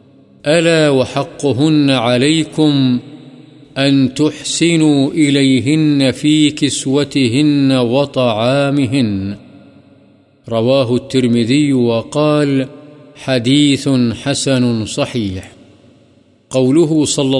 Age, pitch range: 50-69, 125-145 Hz